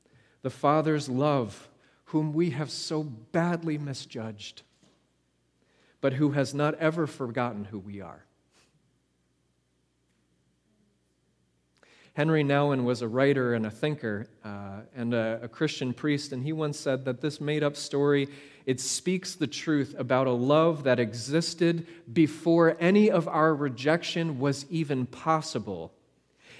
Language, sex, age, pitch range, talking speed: English, male, 40-59, 125-170 Hz, 130 wpm